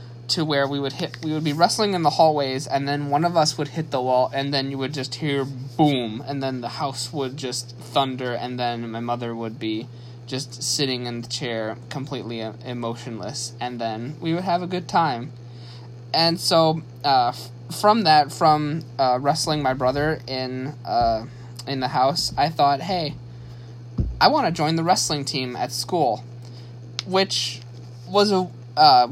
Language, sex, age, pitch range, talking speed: English, male, 20-39, 120-155 Hz, 180 wpm